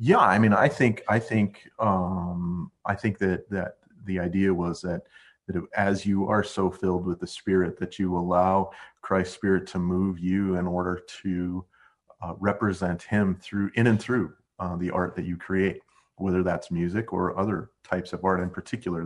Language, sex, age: English, male, 40-59